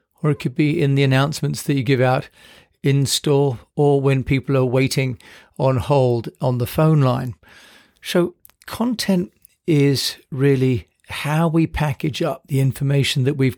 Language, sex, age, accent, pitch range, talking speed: English, male, 40-59, British, 125-150 Hz, 160 wpm